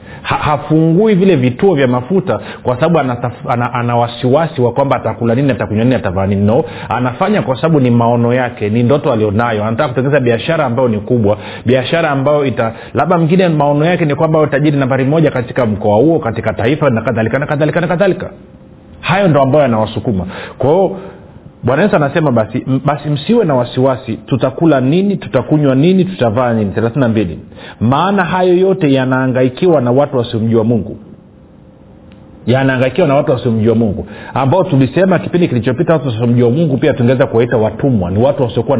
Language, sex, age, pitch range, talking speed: Swahili, male, 40-59, 115-150 Hz, 155 wpm